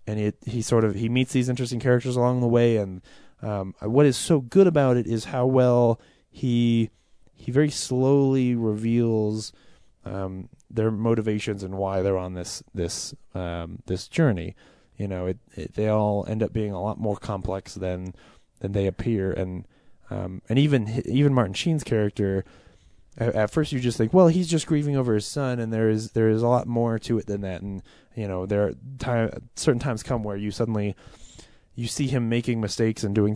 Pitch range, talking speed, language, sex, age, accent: 100-125 Hz, 195 wpm, English, male, 20-39, American